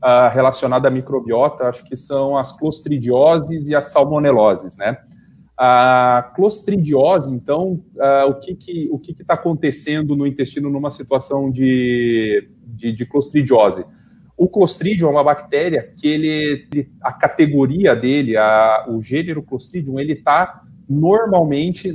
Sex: male